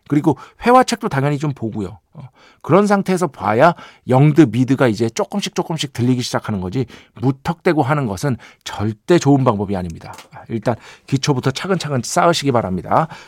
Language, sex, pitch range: Korean, male, 115-195 Hz